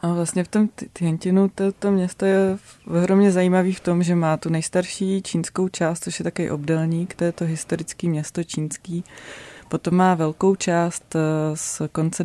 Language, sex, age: Czech, female, 20-39